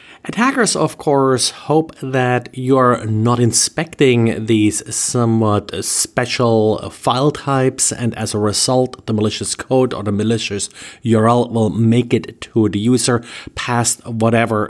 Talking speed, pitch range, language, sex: 130 wpm, 110-130 Hz, English, male